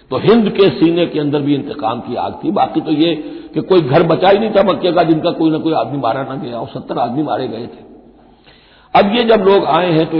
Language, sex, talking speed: Hindi, male, 260 wpm